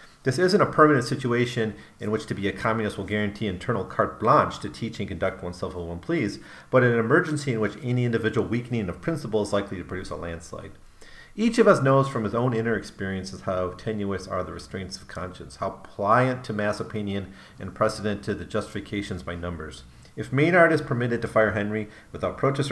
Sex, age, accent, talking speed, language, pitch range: male, 40-59, American, 205 wpm, English, 90-120 Hz